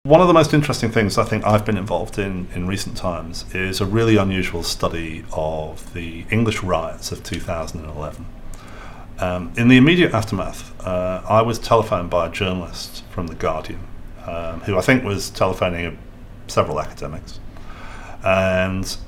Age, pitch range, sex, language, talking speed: 40-59, 90-110 Hz, male, English, 155 wpm